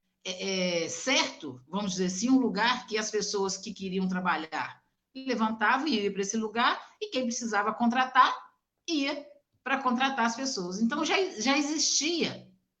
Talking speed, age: 145 wpm, 50-69